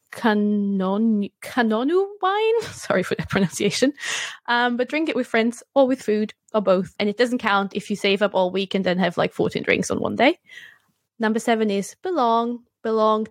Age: 20-39